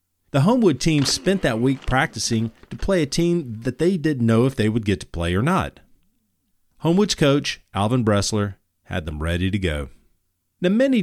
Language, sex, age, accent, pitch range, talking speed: English, male, 40-59, American, 95-130 Hz, 185 wpm